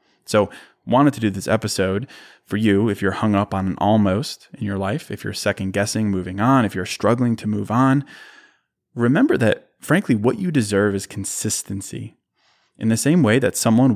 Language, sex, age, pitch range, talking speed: English, male, 20-39, 100-115 Hz, 185 wpm